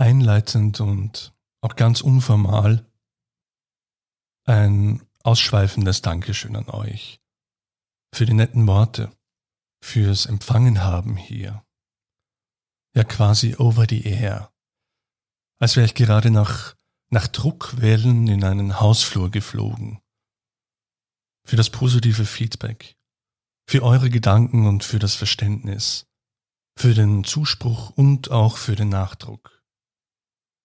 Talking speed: 105 wpm